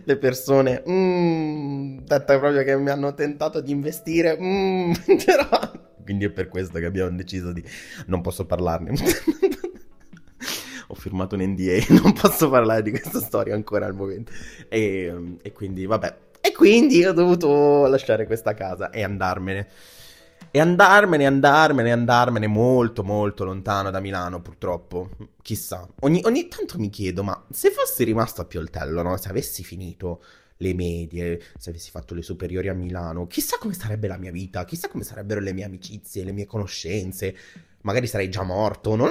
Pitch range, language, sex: 95-145 Hz, Italian, male